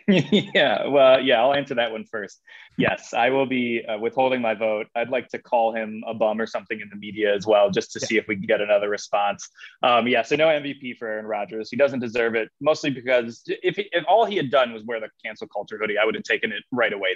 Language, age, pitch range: English, 20-39, 115-155 Hz